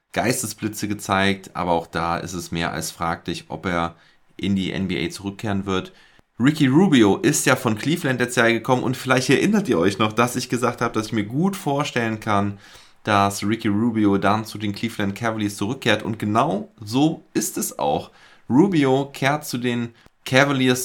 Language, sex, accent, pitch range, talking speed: German, male, German, 100-125 Hz, 180 wpm